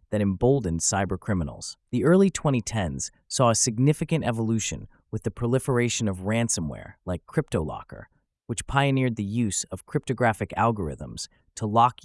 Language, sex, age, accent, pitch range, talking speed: English, male, 30-49, American, 95-130 Hz, 130 wpm